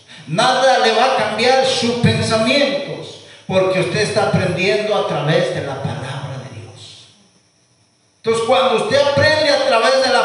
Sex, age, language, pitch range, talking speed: male, 50-69, Spanish, 175-240 Hz, 150 wpm